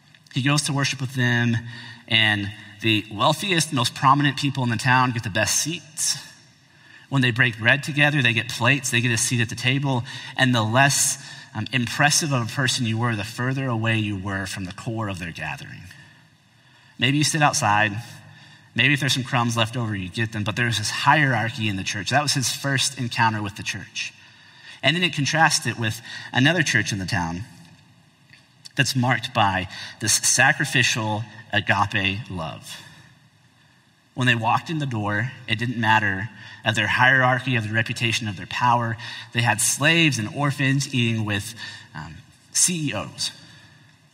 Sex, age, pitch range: male, 30-49, 115-140 Hz